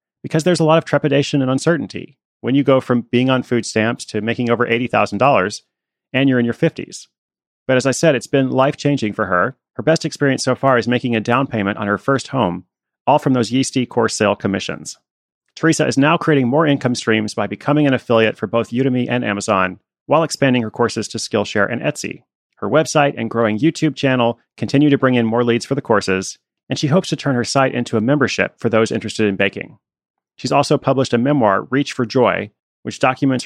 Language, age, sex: English, 30-49, male